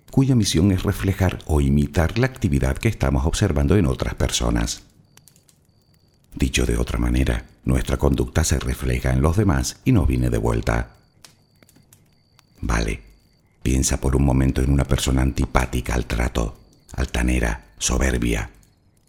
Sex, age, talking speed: male, 60-79, 135 wpm